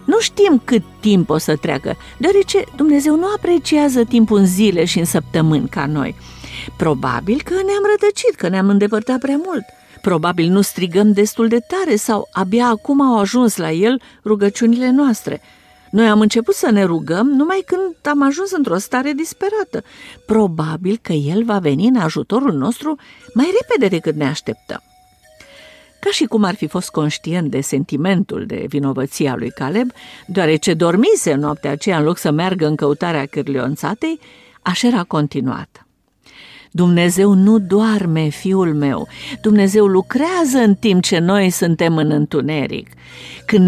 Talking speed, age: 155 wpm, 50-69